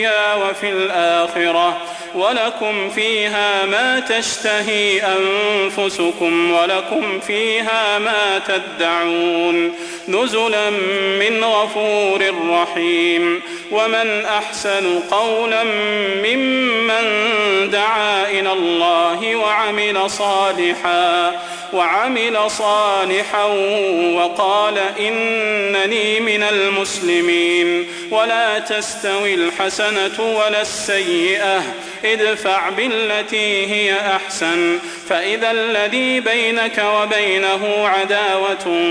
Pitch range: 180-220 Hz